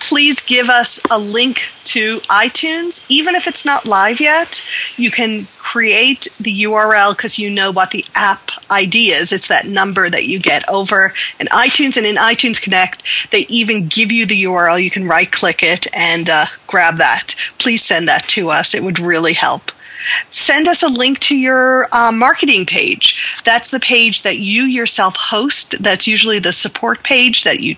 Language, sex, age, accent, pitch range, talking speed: English, female, 40-59, American, 205-275 Hz, 185 wpm